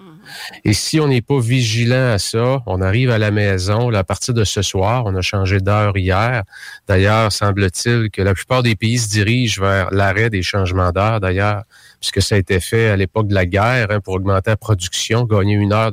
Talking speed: 210 wpm